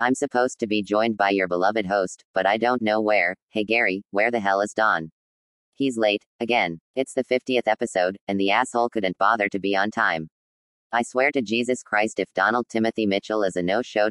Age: 30-49